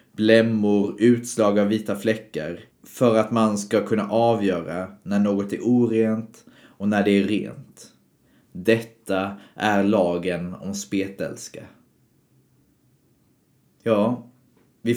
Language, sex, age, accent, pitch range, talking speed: Swedish, male, 30-49, native, 95-110 Hz, 110 wpm